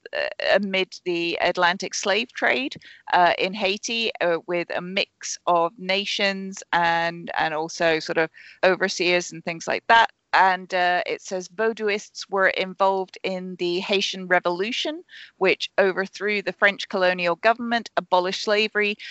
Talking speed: 135 wpm